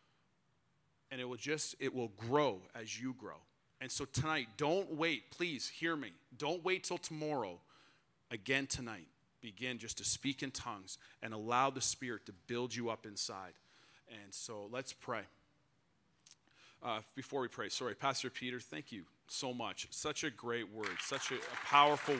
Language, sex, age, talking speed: English, male, 40-59, 170 wpm